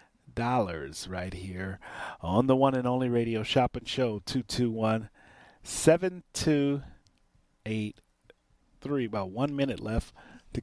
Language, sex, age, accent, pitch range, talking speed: English, male, 30-49, American, 105-150 Hz, 100 wpm